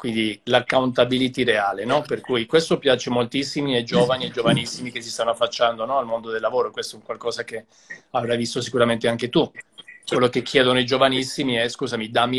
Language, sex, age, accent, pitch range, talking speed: Italian, male, 40-59, native, 120-150 Hz, 195 wpm